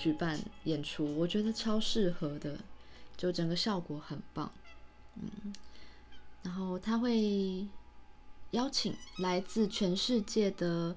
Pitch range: 155-200 Hz